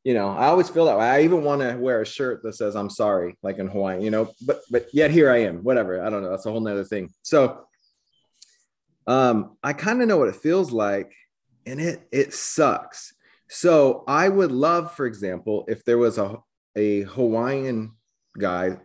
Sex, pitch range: male, 105-150 Hz